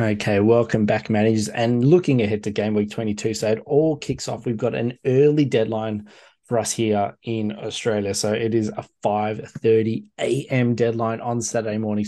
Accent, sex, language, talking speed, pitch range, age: Australian, male, English, 175 wpm, 110-120 Hz, 20-39